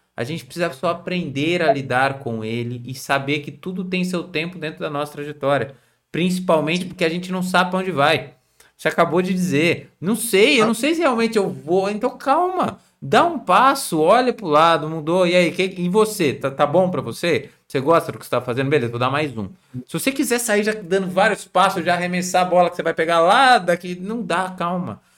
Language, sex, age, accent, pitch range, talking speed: Portuguese, male, 20-39, Brazilian, 150-195 Hz, 225 wpm